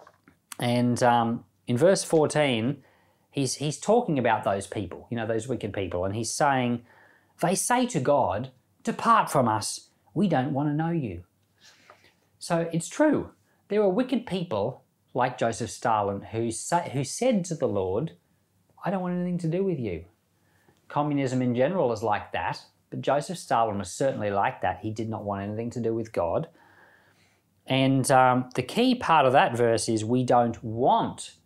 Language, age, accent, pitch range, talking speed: English, 40-59, Australian, 110-160 Hz, 175 wpm